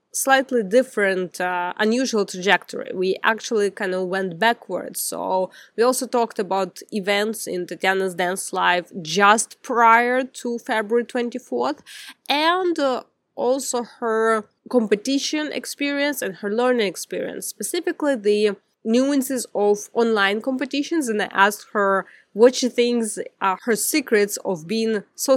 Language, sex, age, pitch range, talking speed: English, female, 20-39, 200-250 Hz, 130 wpm